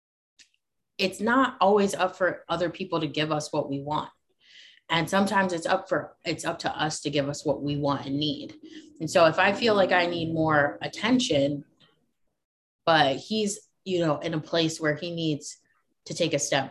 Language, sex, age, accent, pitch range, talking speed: English, female, 20-39, American, 145-180 Hz, 195 wpm